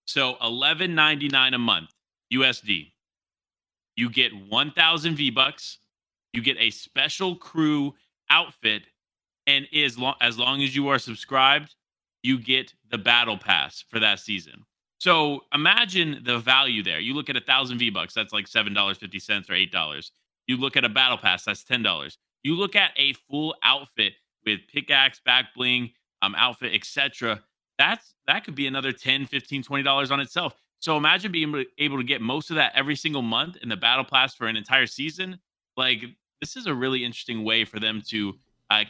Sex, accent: male, American